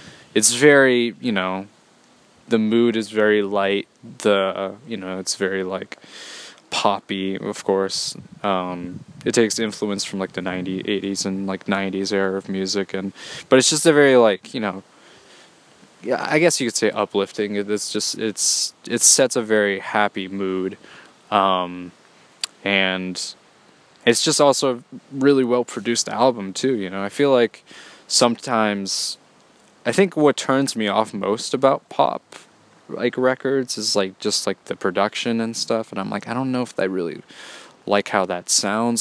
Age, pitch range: 20-39, 95-120 Hz